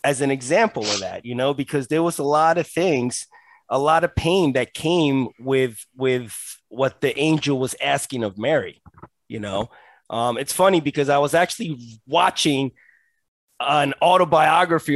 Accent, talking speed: American, 165 wpm